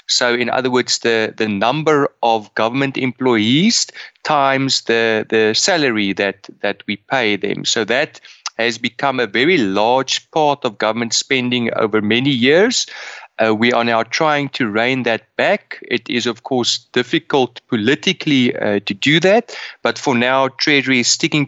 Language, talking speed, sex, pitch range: English, 160 wpm, male, 110-130 Hz